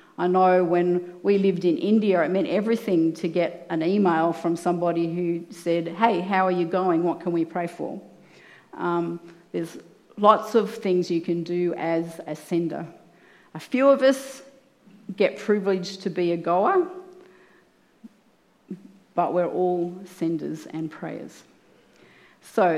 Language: English